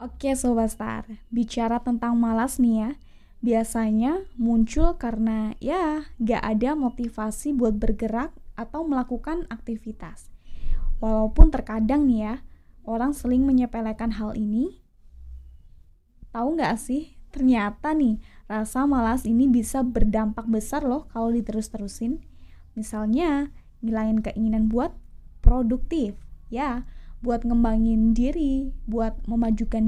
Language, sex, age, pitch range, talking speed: Indonesian, female, 20-39, 220-260 Hz, 110 wpm